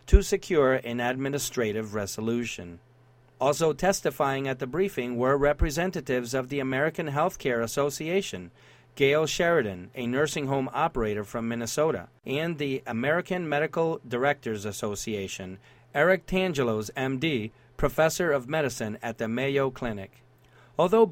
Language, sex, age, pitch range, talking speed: English, male, 40-59, 115-150 Hz, 120 wpm